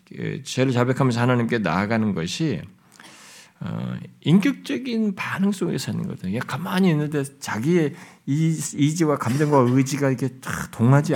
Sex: male